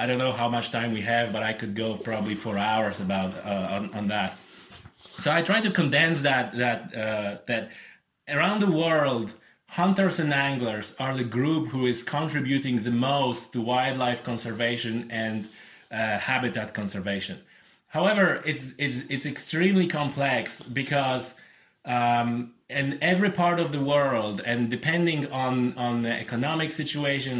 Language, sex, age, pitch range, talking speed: English, male, 30-49, 120-155 Hz, 155 wpm